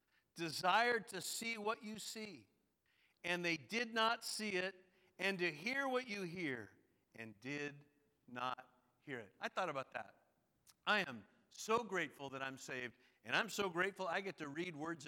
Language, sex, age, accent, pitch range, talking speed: English, male, 50-69, American, 170-220 Hz, 170 wpm